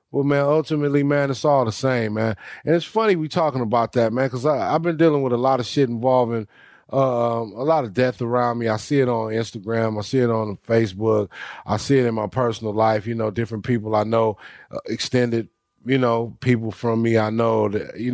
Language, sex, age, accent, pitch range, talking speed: English, male, 30-49, American, 110-130 Hz, 225 wpm